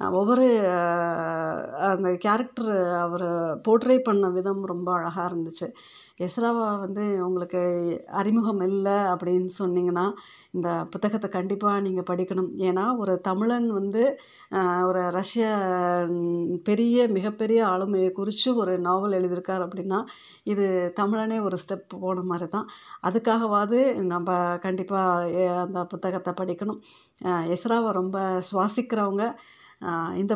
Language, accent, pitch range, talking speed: Tamil, native, 180-205 Hz, 105 wpm